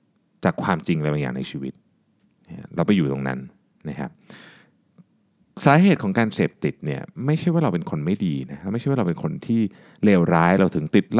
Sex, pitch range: male, 85-130 Hz